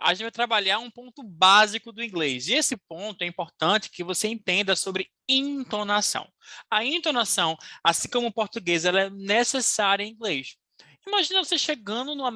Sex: male